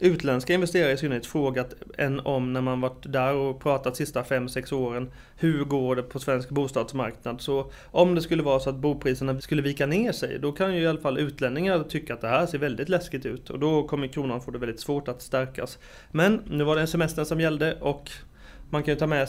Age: 30-49